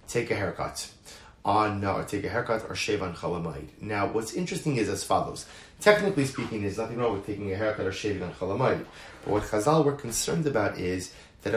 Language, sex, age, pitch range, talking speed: English, male, 30-49, 110-140 Hz, 210 wpm